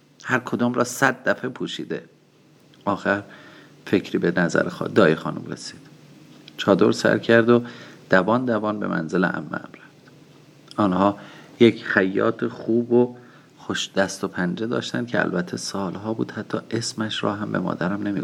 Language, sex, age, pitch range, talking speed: Persian, male, 40-59, 95-125 Hz, 150 wpm